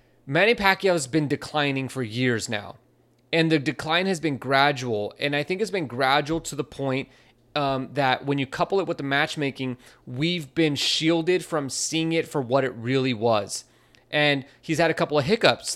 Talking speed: 190 wpm